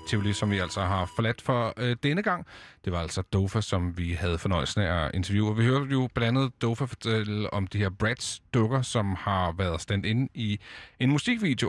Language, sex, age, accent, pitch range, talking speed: Danish, male, 30-49, native, 95-125 Hz, 200 wpm